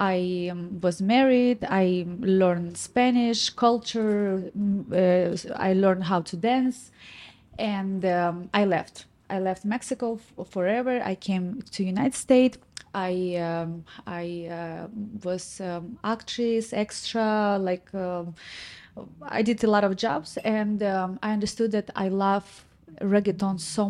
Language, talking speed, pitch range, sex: English, 135 wpm, 185-215 Hz, female